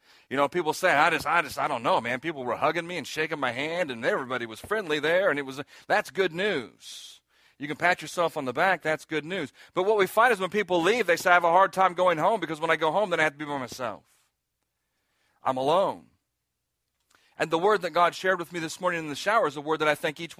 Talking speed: 270 wpm